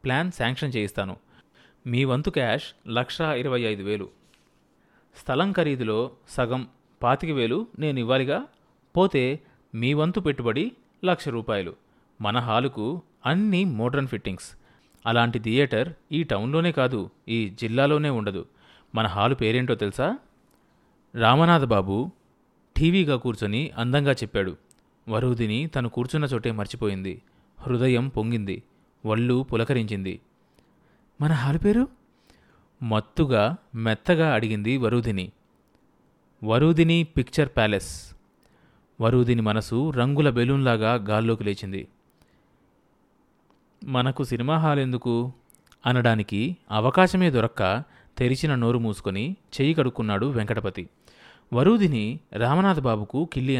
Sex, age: male, 30-49